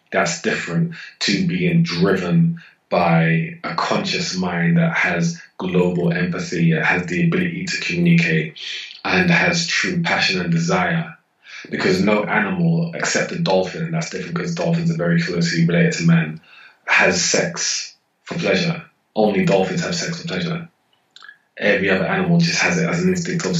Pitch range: 165-185 Hz